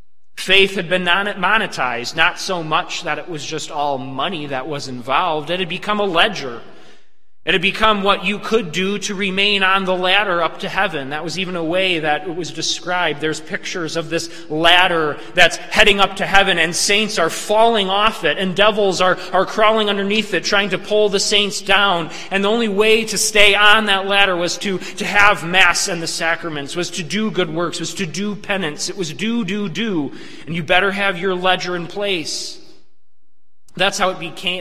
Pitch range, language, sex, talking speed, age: 140-195 Hz, English, male, 205 wpm, 30-49